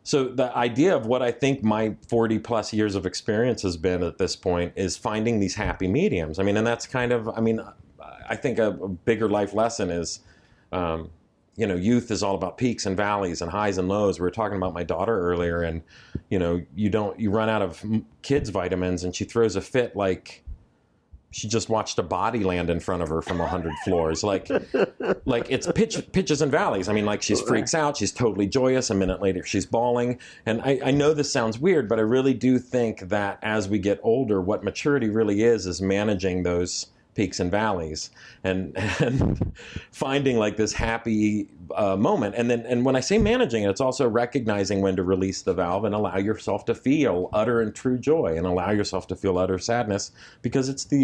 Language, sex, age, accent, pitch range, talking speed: English, male, 40-59, American, 90-115 Hz, 210 wpm